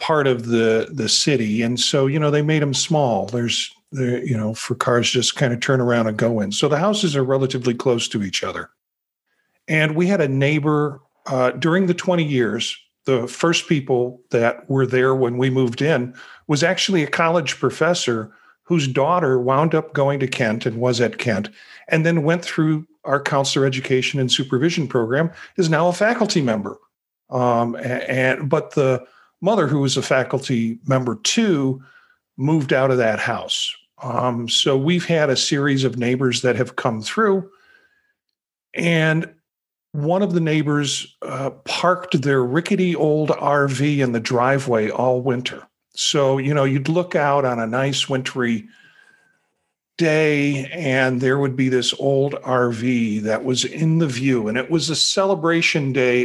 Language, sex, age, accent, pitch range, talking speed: English, male, 50-69, American, 125-160 Hz, 170 wpm